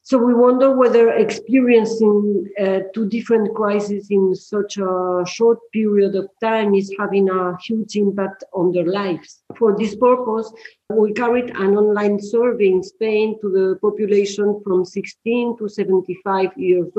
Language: English